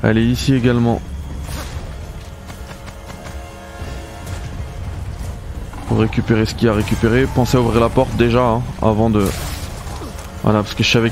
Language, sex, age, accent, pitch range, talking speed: French, male, 20-39, French, 85-110 Hz, 135 wpm